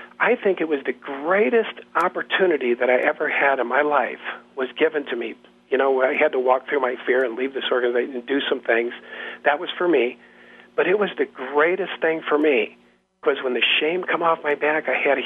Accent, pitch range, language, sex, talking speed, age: American, 130-190 Hz, English, male, 230 wpm, 50-69